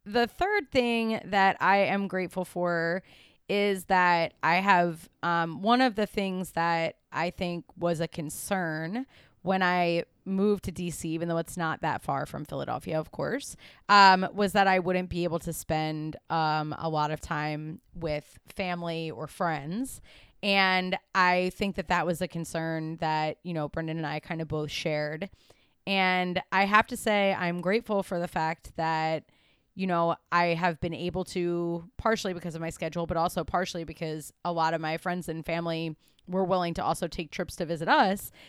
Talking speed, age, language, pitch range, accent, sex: 180 wpm, 20-39, English, 165-195 Hz, American, female